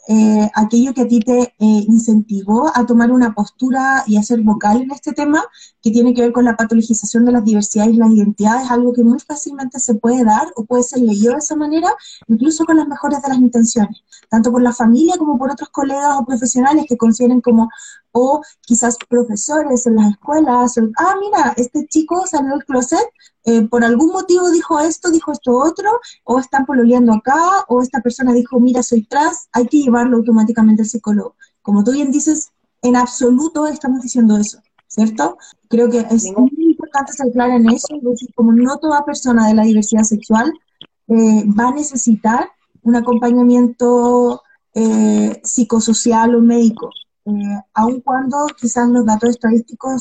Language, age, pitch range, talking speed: Spanish, 20-39, 225-280 Hz, 180 wpm